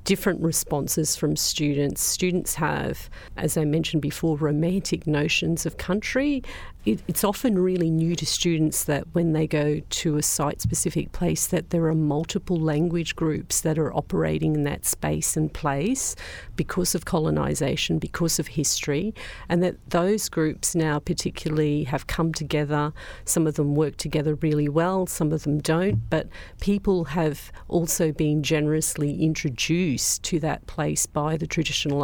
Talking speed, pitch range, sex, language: 150 wpm, 150-175 Hz, female, English